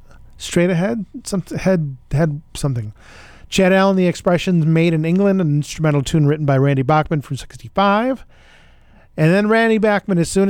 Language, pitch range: English, 125-170 Hz